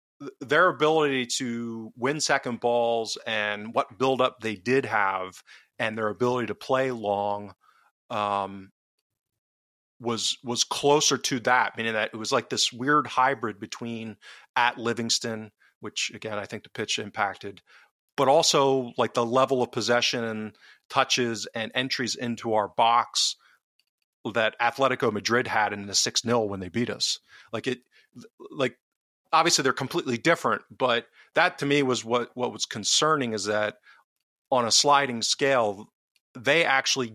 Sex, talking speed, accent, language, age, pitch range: male, 150 wpm, American, English, 40-59, 110-130 Hz